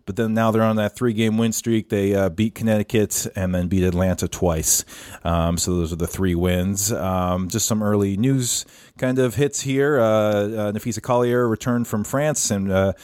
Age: 30-49